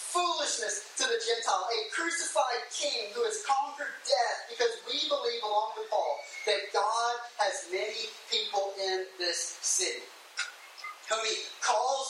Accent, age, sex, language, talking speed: American, 30-49, male, English, 140 wpm